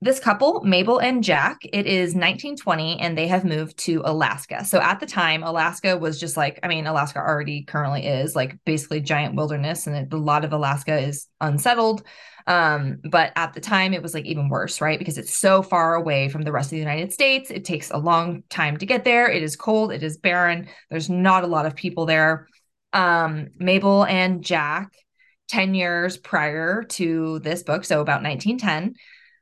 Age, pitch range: 20-39, 155-190 Hz